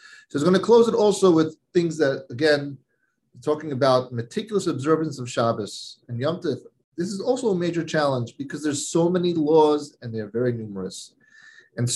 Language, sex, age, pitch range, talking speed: English, male, 30-49, 125-185 Hz, 190 wpm